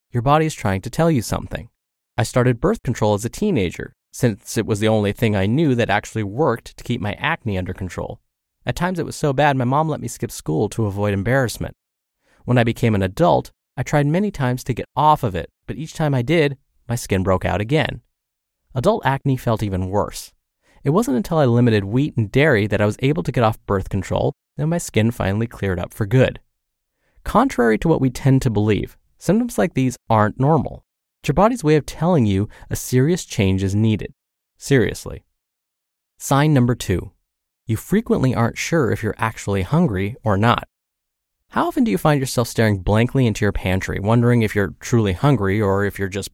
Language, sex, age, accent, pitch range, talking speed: English, male, 30-49, American, 100-145 Hz, 205 wpm